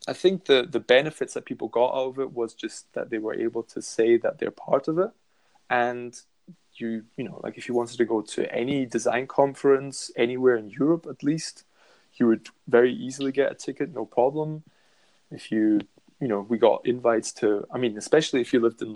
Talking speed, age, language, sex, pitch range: 210 wpm, 20-39, English, male, 115-140 Hz